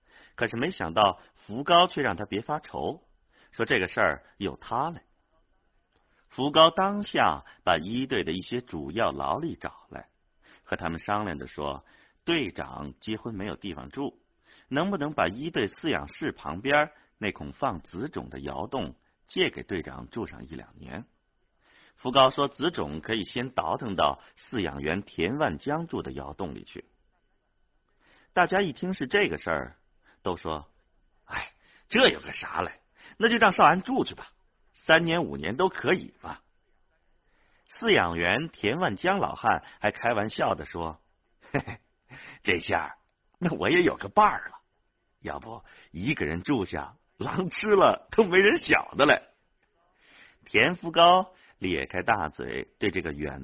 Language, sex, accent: Chinese, male, native